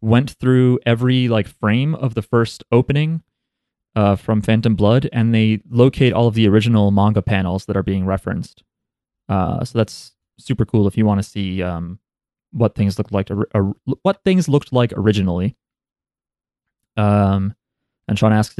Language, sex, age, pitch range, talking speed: English, male, 20-39, 100-135 Hz, 170 wpm